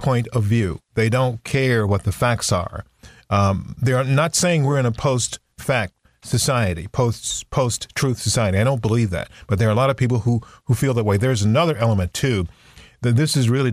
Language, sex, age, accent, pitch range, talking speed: English, male, 40-59, American, 105-130 Hz, 200 wpm